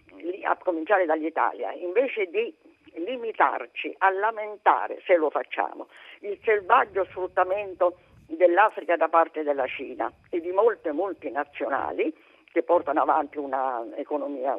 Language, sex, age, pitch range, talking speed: Italian, female, 50-69, 170-285 Hz, 110 wpm